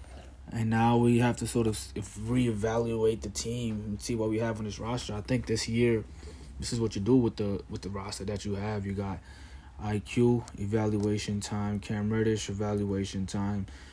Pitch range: 95-115 Hz